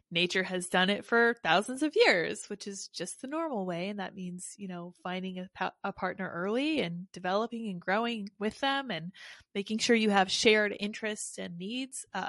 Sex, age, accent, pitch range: female, 20-39, American, 185-250 Hz